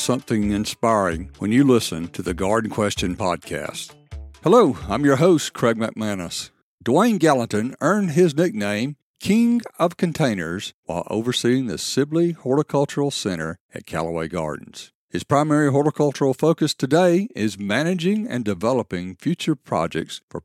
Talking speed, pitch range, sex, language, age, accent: 130 wpm, 110-165 Hz, male, English, 60-79, American